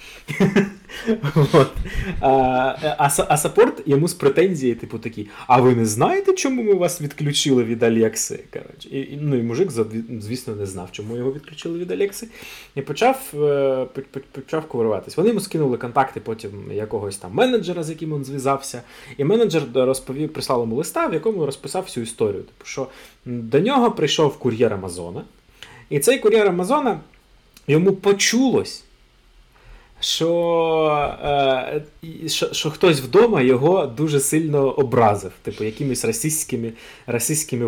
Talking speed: 135 wpm